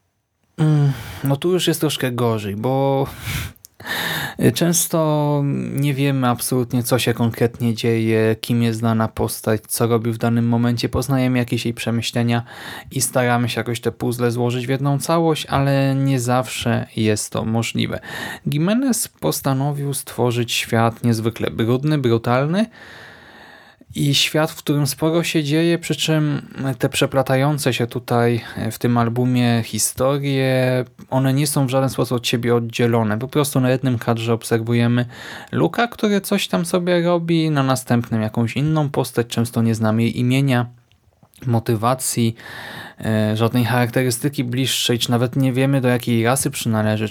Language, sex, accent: Polish, male, native